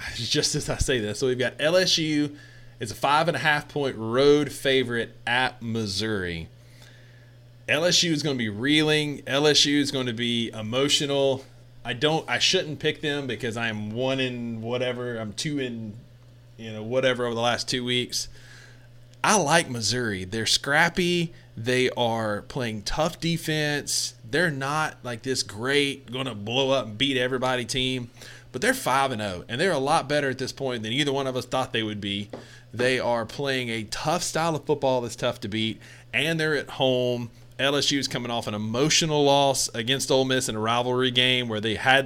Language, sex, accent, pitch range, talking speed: English, male, American, 120-140 Hz, 185 wpm